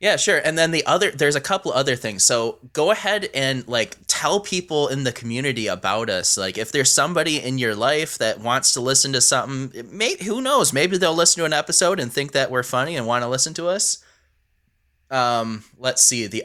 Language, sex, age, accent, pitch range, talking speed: English, male, 20-39, American, 110-140 Hz, 220 wpm